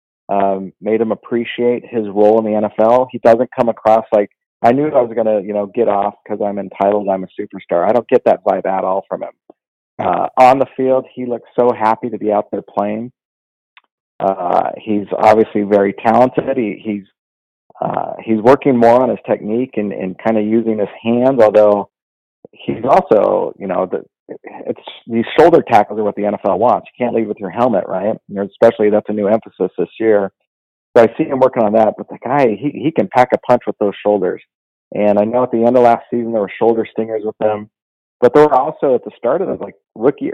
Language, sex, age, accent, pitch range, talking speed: English, male, 40-59, American, 100-120 Hz, 220 wpm